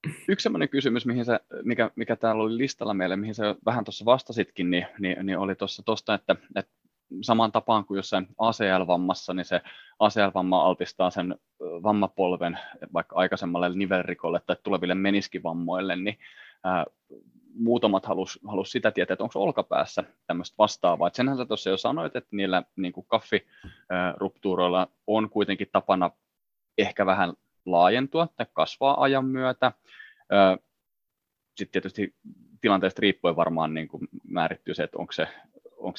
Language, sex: Finnish, male